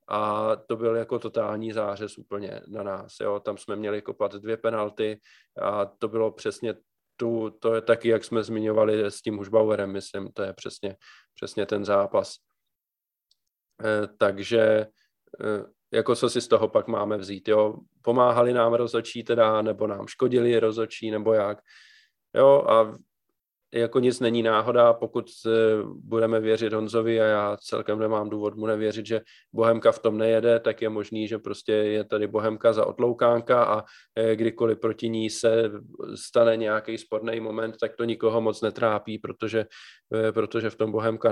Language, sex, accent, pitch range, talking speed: Czech, male, native, 110-115 Hz, 155 wpm